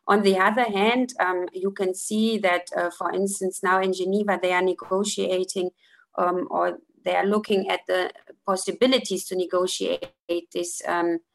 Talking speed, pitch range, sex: 160 wpm, 180-205 Hz, female